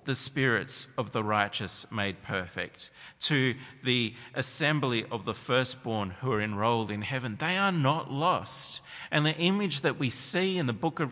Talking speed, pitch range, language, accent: 175 wpm, 95-135 Hz, English, Australian